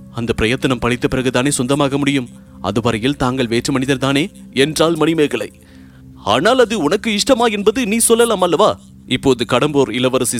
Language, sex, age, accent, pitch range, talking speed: English, male, 30-49, Indian, 120-160 Hz, 125 wpm